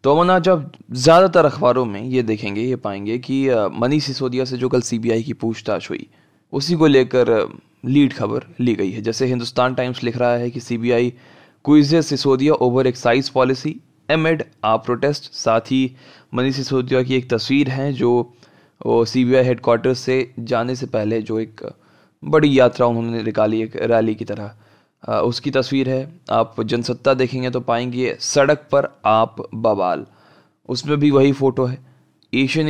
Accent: native